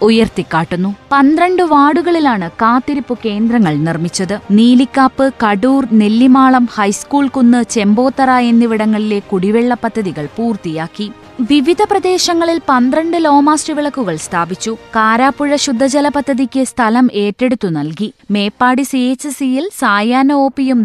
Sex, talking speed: female, 100 wpm